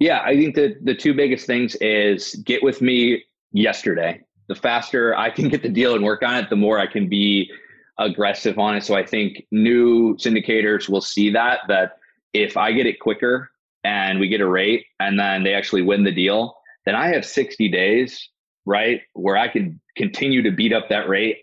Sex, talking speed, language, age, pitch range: male, 205 wpm, English, 30-49, 100-125 Hz